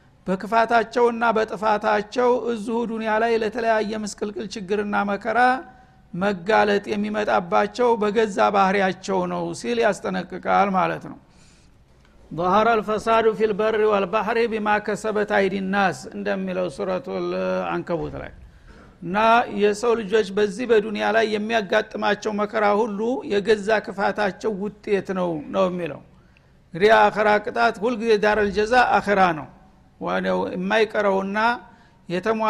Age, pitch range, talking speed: 60-79, 200-225 Hz, 85 wpm